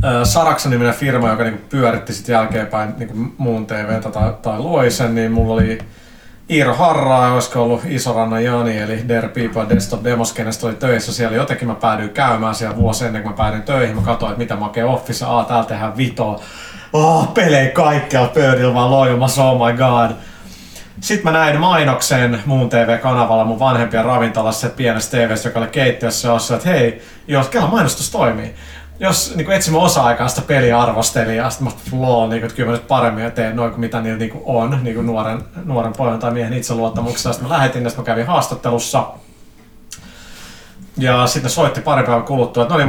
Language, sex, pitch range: Finnish, male, 115-135 Hz